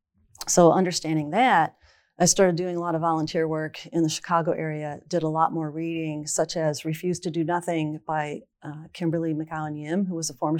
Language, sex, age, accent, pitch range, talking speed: English, female, 40-59, American, 155-180 Hz, 195 wpm